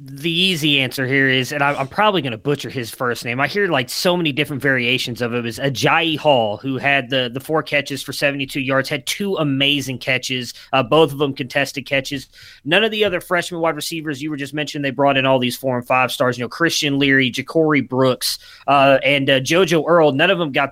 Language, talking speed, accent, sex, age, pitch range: English, 235 wpm, American, male, 20-39, 135-155 Hz